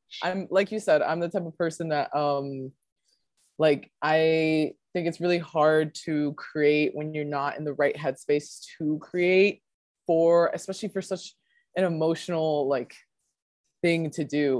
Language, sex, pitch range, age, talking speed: English, female, 145-175 Hz, 20-39, 155 wpm